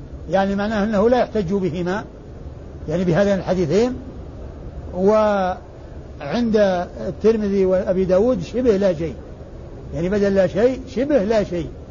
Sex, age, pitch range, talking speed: male, 60-79, 180-230 Hz, 115 wpm